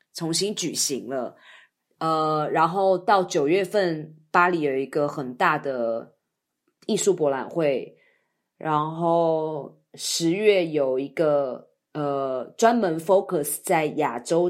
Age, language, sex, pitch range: 20-39, Chinese, female, 150-190 Hz